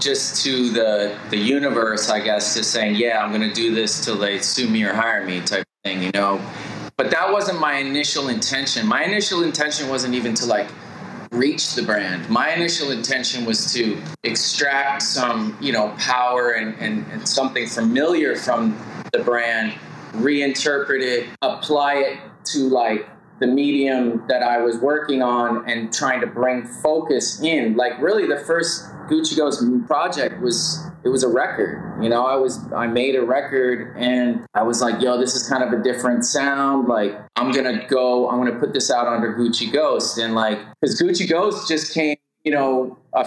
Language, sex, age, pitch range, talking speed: English, male, 20-39, 120-145 Hz, 185 wpm